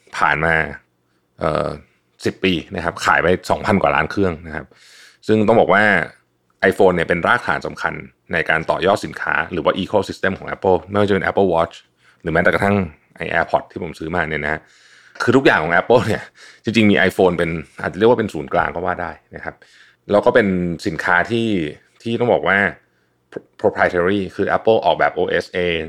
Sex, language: male, Thai